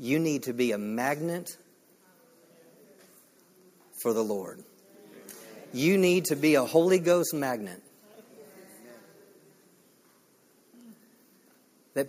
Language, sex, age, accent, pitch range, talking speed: English, male, 50-69, American, 120-165 Hz, 90 wpm